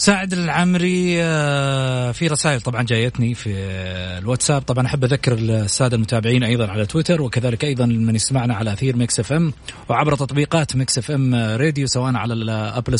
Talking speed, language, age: 155 wpm, Arabic, 30-49